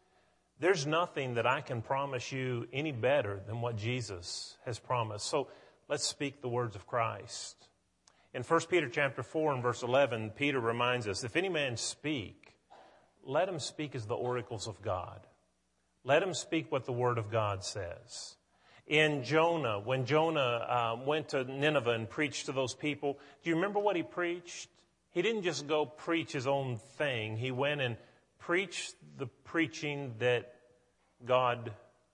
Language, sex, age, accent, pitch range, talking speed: English, male, 40-59, American, 115-145 Hz, 160 wpm